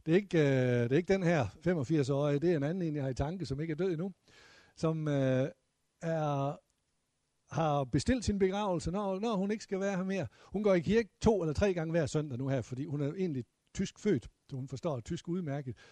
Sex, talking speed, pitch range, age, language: male, 230 wpm, 140-185 Hz, 60-79, Danish